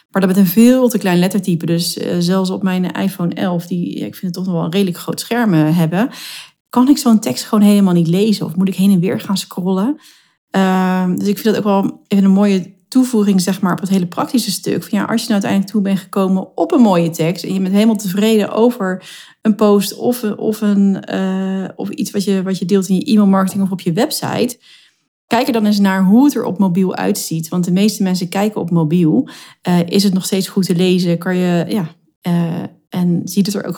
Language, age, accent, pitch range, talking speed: Dutch, 40-59, Dutch, 175-210 Hz, 235 wpm